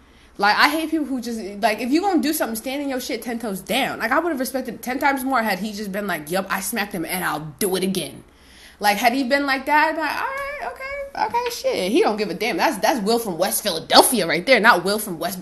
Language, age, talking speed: English, 20-39, 265 wpm